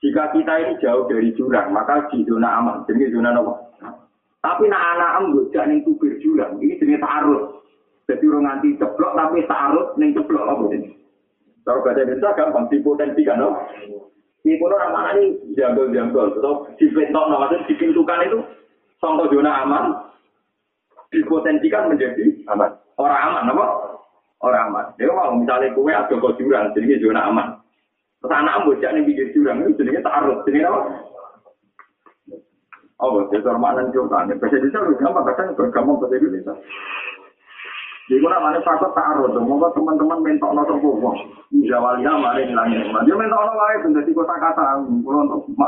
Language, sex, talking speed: Indonesian, male, 135 wpm